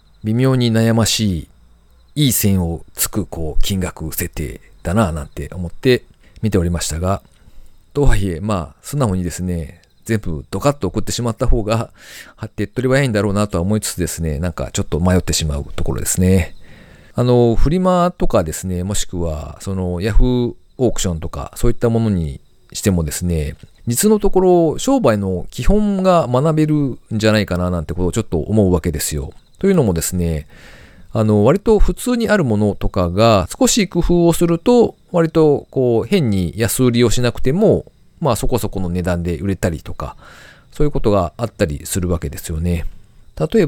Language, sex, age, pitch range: Japanese, male, 40-59, 85-130 Hz